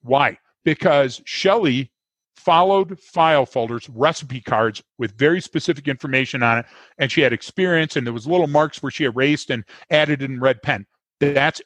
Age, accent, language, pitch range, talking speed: 40-59, American, English, 125-160 Hz, 165 wpm